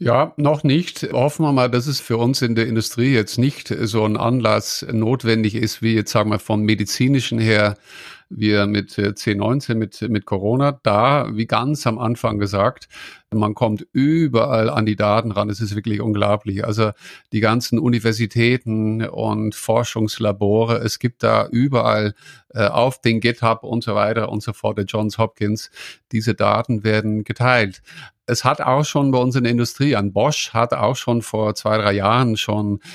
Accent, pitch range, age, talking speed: German, 105-120 Hz, 50-69, 175 wpm